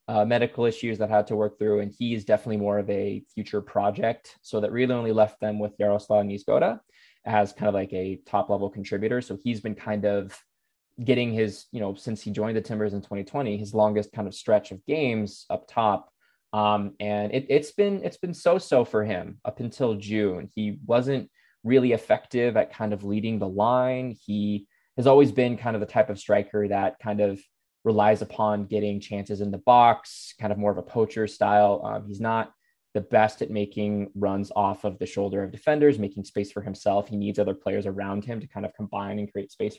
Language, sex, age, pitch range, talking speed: English, male, 20-39, 100-115 Hz, 210 wpm